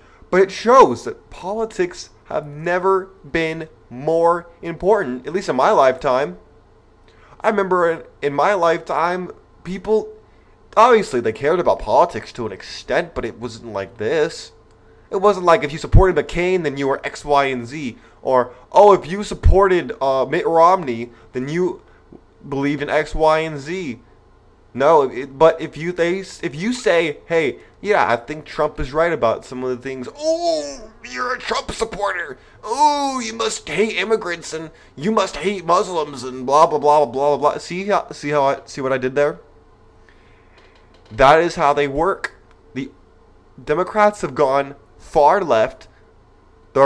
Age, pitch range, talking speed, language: 20-39, 125-180 Hz, 165 wpm, English